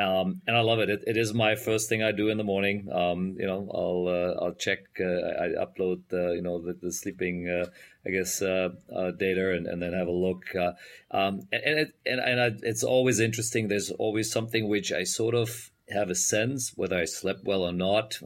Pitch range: 90-110 Hz